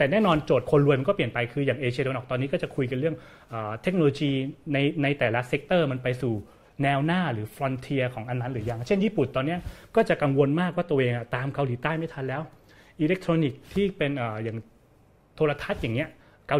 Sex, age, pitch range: male, 20-39, 120-160 Hz